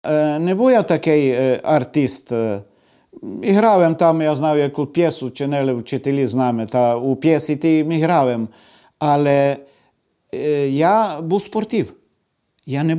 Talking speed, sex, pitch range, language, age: 125 wpm, male, 130-215 Hz, Ukrainian, 50-69